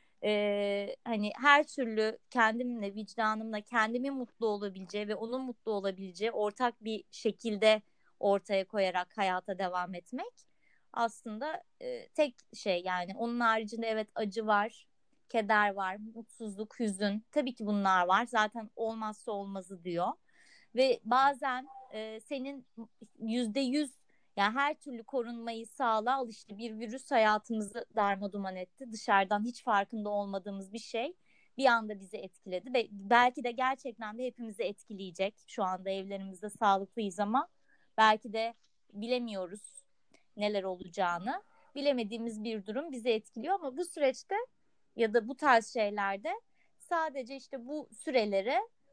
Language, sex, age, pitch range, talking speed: Turkish, female, 30-49, 205-255 Hz, 125 wpm